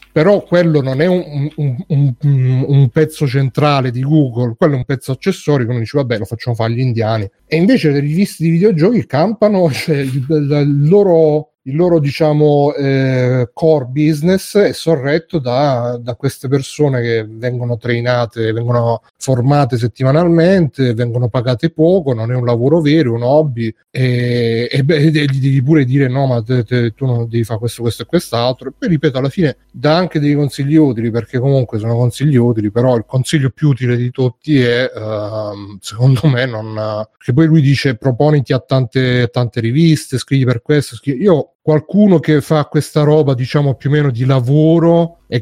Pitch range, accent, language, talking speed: 125-150 Hz, native, Italian, 185 wpm